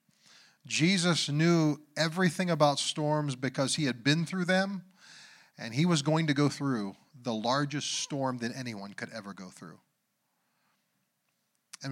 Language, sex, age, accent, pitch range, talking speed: English, male, 40-59, American, 135-175 Hz, 140 wpm